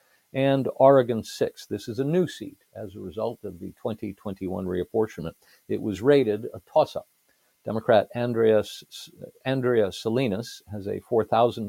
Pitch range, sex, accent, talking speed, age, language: 105-135 Hz, male, American, 155 wpm, 50-69, English